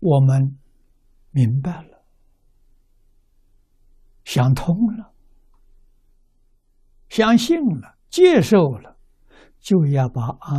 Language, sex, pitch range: Chinese, male, 100-140 Hz